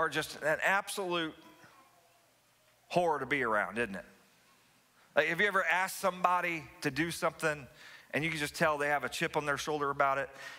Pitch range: 150-190 Hz